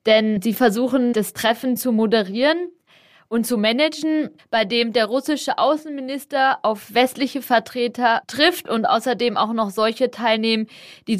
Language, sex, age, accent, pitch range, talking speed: German, female, 20-39, German, 205-245 Hz, 140 wpm